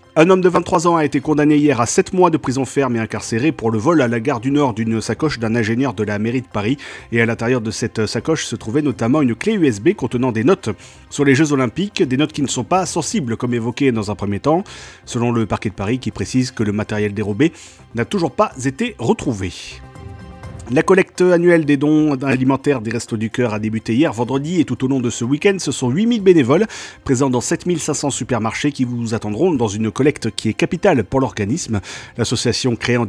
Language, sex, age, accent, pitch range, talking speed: French, male, 40-59, French, 115-160 Hz, 225 wpm